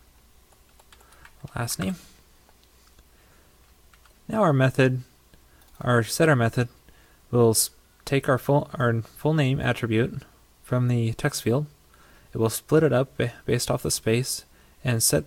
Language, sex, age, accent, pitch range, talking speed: English, male, 20-39, American, 100-130 Hz, 120 wpm